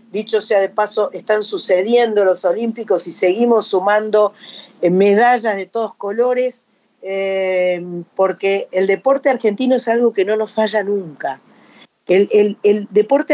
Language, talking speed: Spanish, 140 wpm